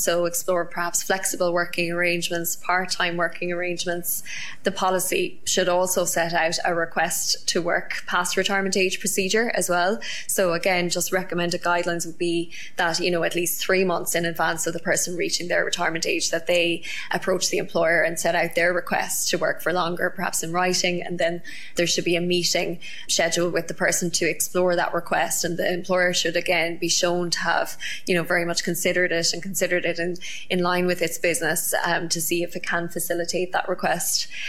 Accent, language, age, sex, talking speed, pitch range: Irish, English, 20-39, female, 195 wpm, 170-185 Hz